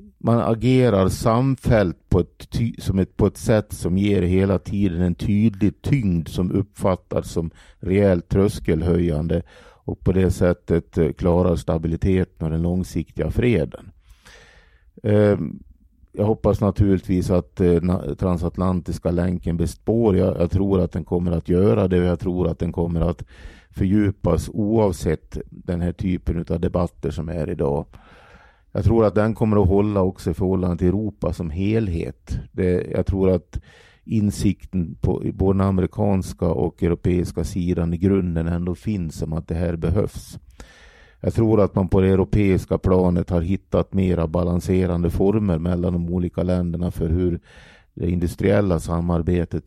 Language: Swedish